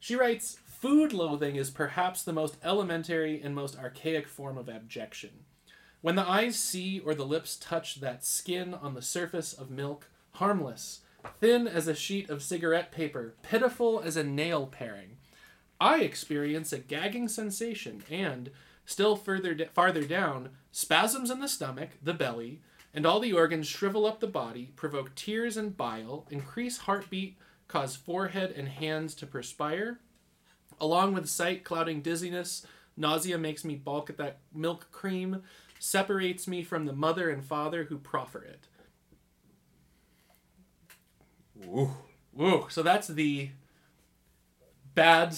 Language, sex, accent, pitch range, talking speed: English, male, American, 145-185 Hz, 145 wpm